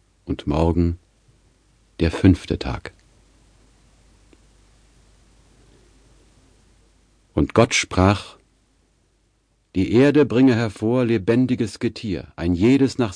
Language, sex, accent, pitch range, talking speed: German, male, German, 85-110 Hz, 80 wpm